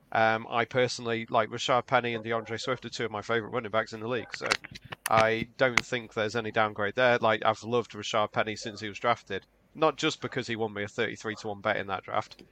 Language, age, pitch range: English, 30-49, 105-125 Hz